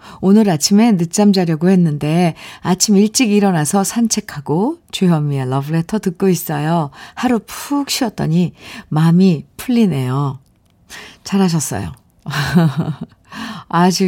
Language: Korean